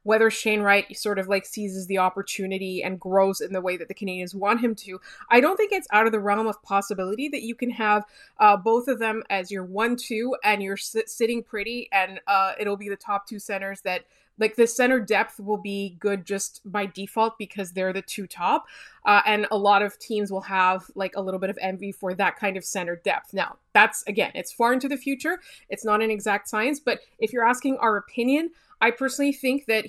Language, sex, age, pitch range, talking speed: English, female, 20-39, 195-240 Hz, 225 wpm